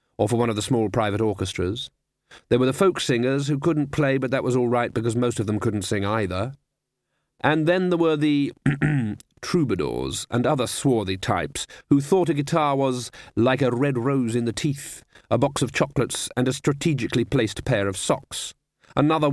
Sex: male